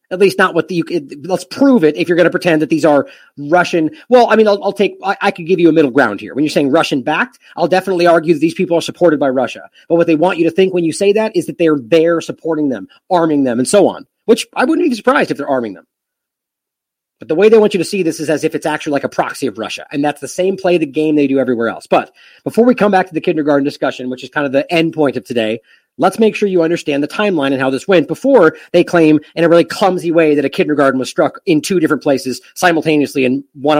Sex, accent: male, American